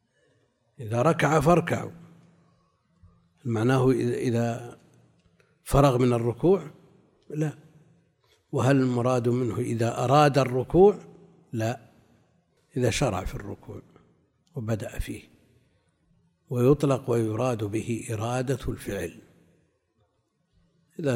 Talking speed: 80 wpm